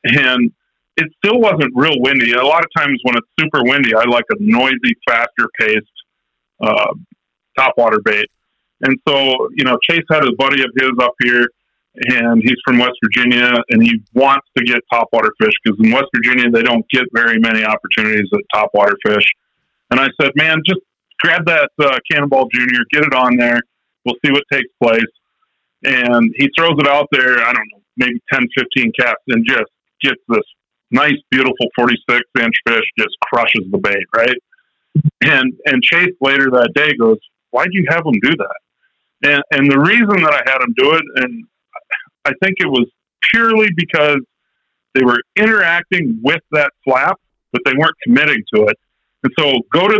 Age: 40-59